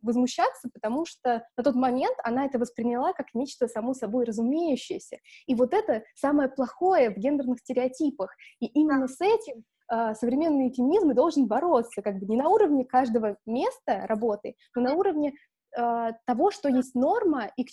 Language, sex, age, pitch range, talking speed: Russian, female, 20-39, 220-270 Hz, 165 wpm